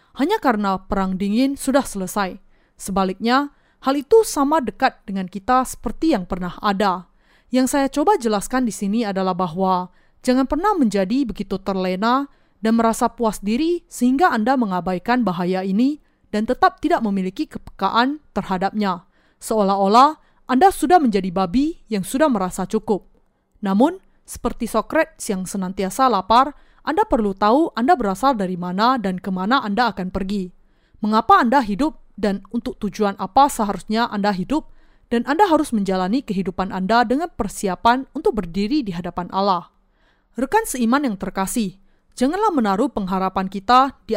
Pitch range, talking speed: 195-265 Hz, 145 wpm